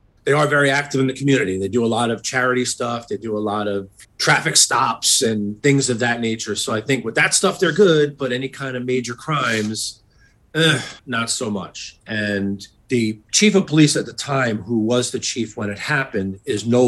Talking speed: 215 wpm